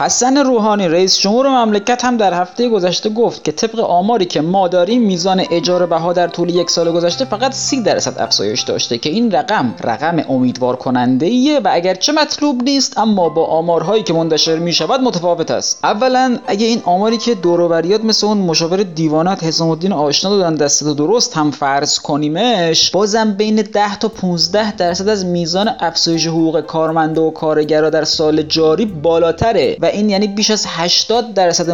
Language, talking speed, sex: Persian, 170 wpm, male